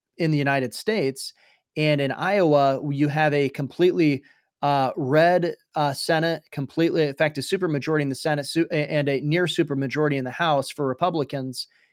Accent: American